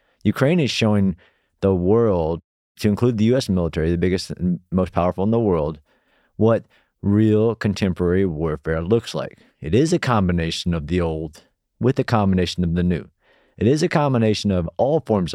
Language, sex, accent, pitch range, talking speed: Ukrainian, male, American, 90-115 Hz, 170 wpm